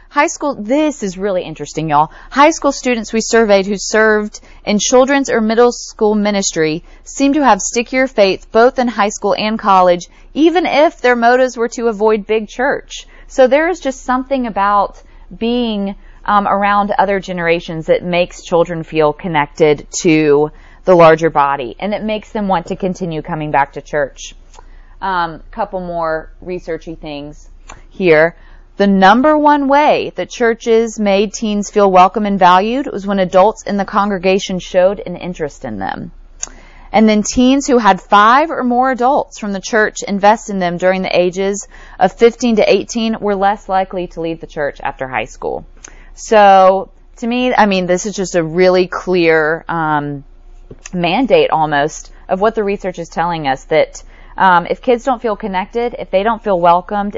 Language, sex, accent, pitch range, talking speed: English, female, American, 175-230 Hz, 175 wpm